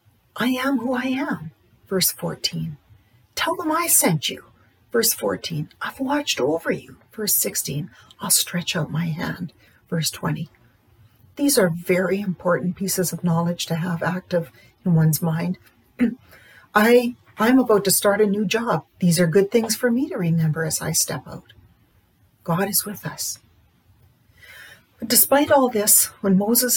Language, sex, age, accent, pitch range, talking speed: English, female, 50-69, American, 155-210 Hz, 150 wpm